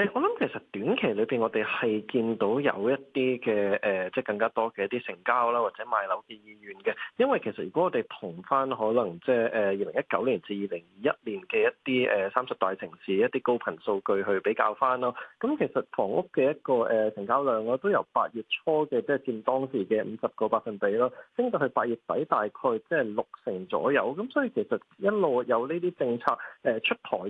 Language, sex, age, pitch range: Chinese, male, 20-39, 110-160 Hz